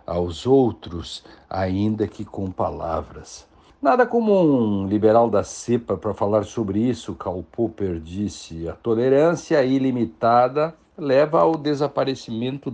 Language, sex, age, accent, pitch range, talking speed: Portuguese, male, 60-79, Brazilian, 95-130 Hz, 115 wpm